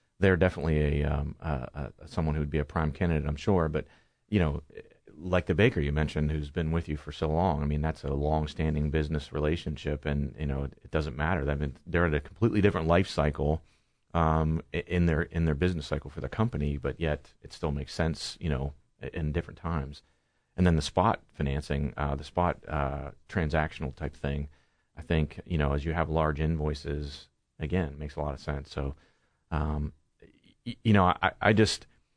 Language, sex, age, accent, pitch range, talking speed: English, male, 30-49, American, 75-90 Hz, 205 wpm